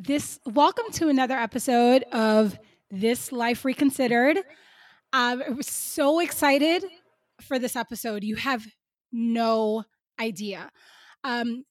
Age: 20-39